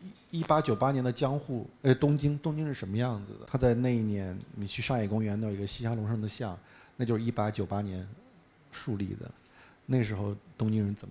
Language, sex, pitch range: Chinese, male, 105-125 Hz